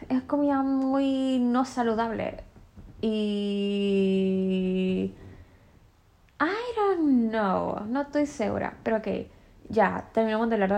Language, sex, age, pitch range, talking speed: Spanish, female, 10-29, 180-225 Hz, 100 wpm